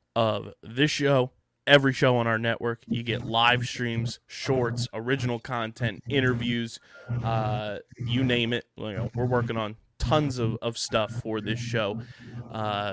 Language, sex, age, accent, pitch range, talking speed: English, male, 20-39, American, 115-130 Hz, 155 wpm